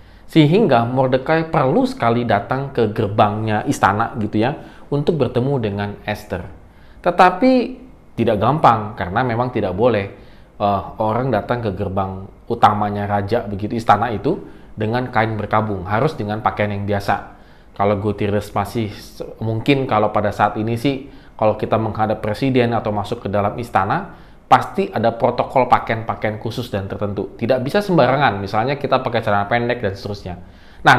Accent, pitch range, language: native, 100-130 Hz, Indonesian